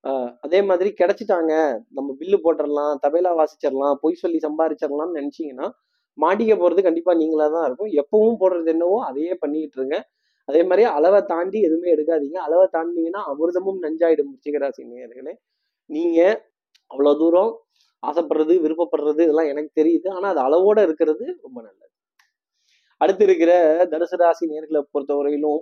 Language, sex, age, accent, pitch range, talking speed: Tamil, male, 20-39, native, 150-180 Hz, 130 wpm